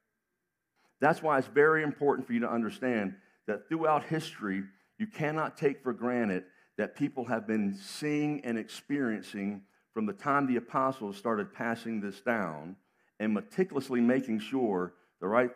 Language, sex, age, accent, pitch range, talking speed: English, male, 60-79, American, 100-130 Hz, 150 wpm